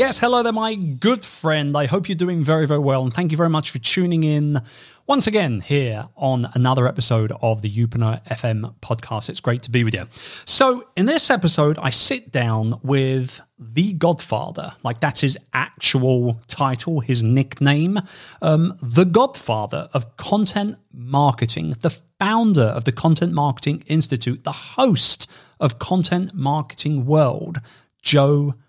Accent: British